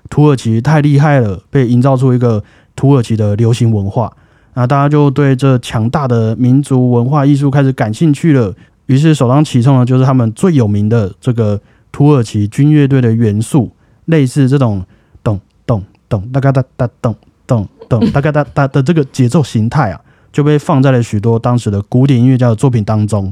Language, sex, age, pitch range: Chinese, male, 20-39, 110-140 Hz